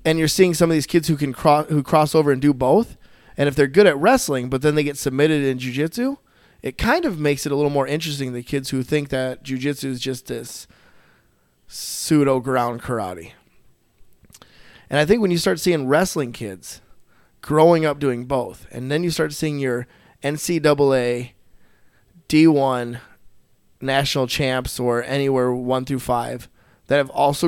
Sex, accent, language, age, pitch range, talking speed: male, American, English, 20-39, 125-150 Hz, 175 wpm